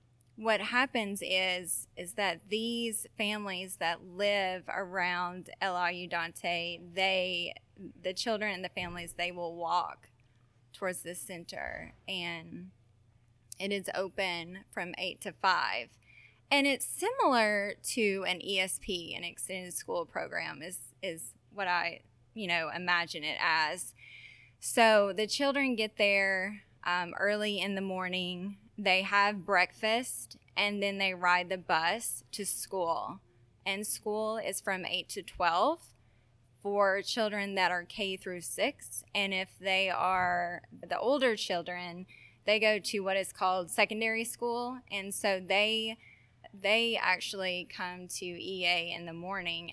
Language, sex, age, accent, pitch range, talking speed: English, female, 20-39, American, 170-200 Hz, 135 wpm